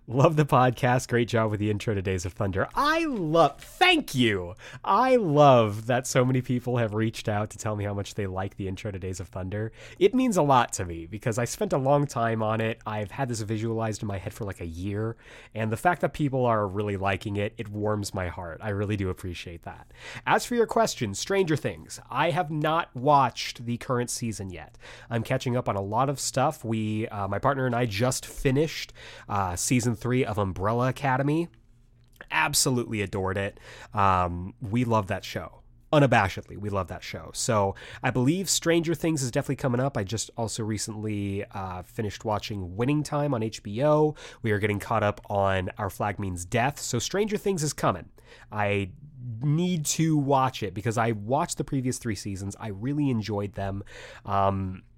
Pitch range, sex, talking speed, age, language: 105-140 Hz, male, 200 wpm, 30-49, English